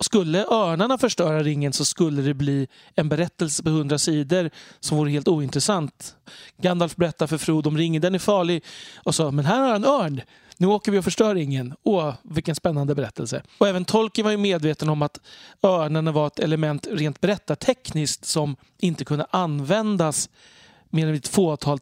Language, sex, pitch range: Swedish, male, 145-185 Hz